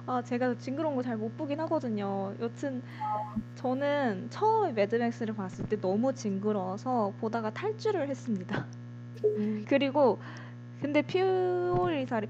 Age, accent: 20-39, native